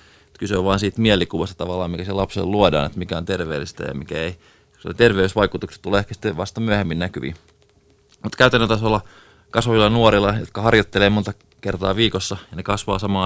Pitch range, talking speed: 90-105 Hz, 175 wpm